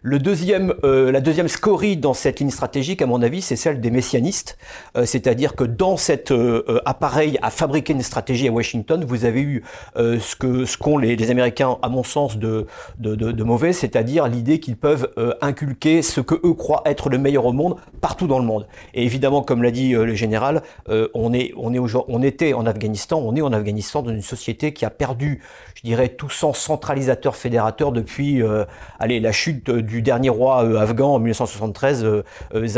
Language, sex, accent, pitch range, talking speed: French, male, French, 115-150 Hz, 205 wpm